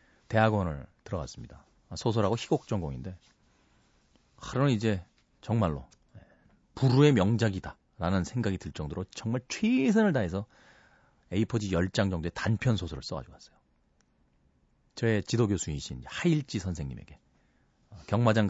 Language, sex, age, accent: Korean, male, 40-59, native